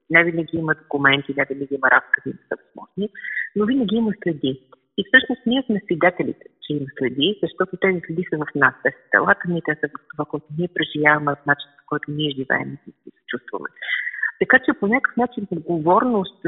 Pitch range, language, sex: 155-210 Hz, Bulgarian, female